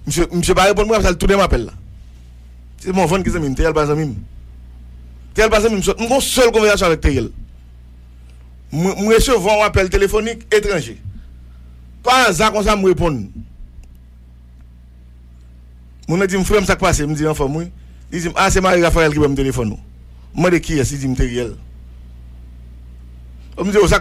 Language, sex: English, male